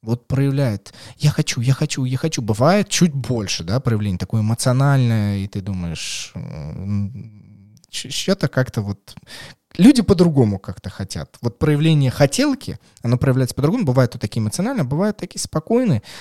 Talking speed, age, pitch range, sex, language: 140 wpm, 20-39, 115-150 Hz, male, Russian